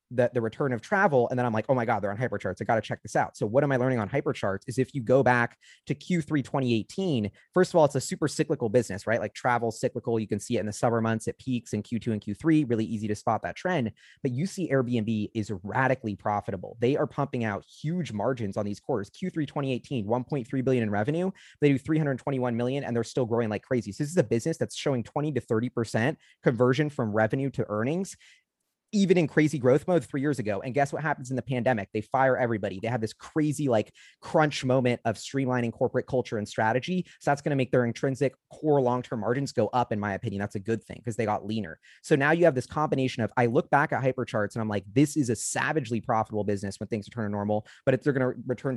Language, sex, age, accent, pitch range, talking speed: English, male, 20-39, American, 110-140 Hz, 245 wpm